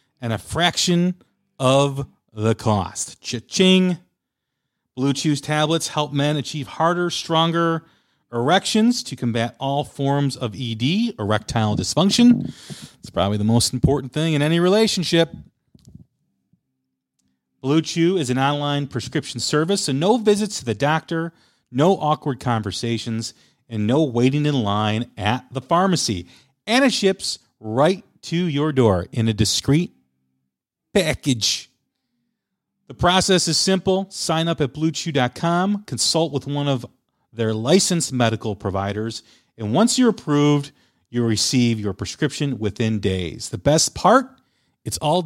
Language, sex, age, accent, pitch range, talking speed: English, male, 40-59, American, 115-165 Hz, 130 wpm